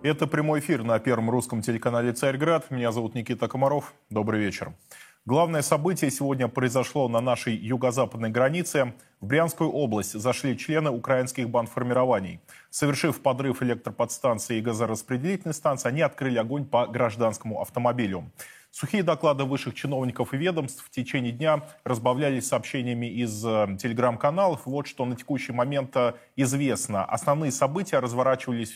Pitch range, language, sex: 120-145 Hz, Russian, male